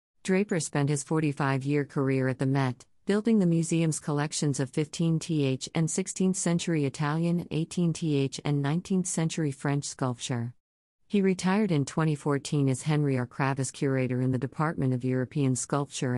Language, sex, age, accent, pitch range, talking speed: English, female, 50-69, American, 130-160 Hz, 140 wpm